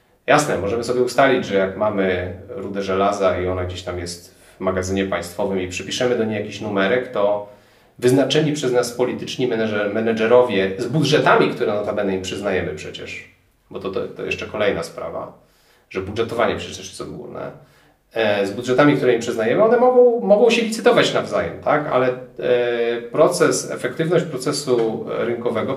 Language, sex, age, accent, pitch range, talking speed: Polish, male, 30-49, native, 95-125 Hz, 155 wpm